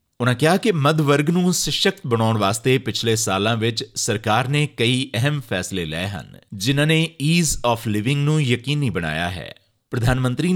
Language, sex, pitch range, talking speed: Punjabi, male, 120-175 Hz, 175 wpm